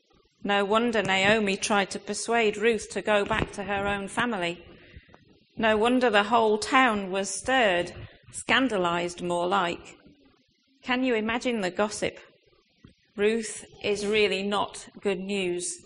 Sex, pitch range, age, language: female, 185-220 Hz, 40-59, English